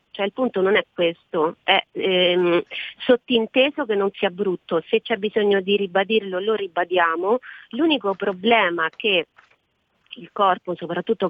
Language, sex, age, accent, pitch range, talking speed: Italian, female, 30-49, native, 185-220 Hz, 135 wpm